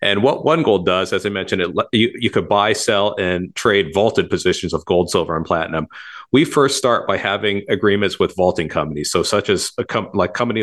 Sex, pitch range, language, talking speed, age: male, 95-110 Hz, English, 200 wpm, 40-59